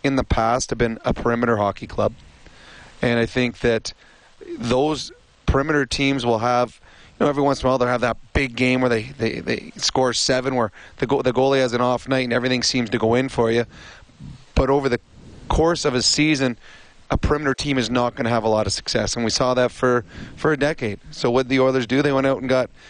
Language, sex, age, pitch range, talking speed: English, male, 30-49, 115-135 Hz, 235 wpm